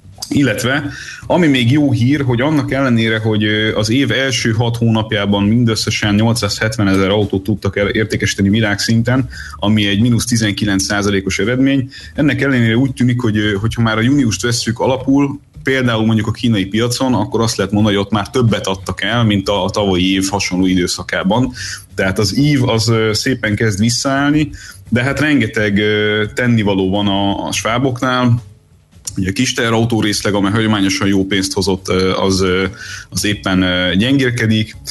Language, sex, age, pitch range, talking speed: Hungarian, male, 30-49, 95-115 Hz, 150 wpm